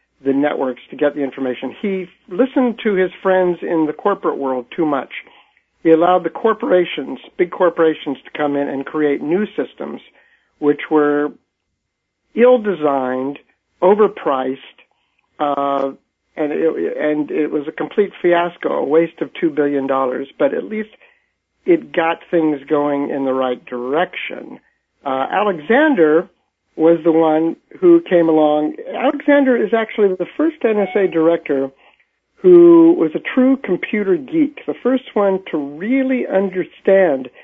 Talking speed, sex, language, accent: 140 wpm, male, English, American